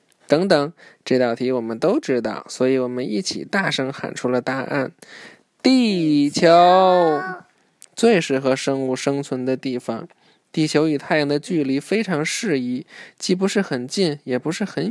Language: Chinese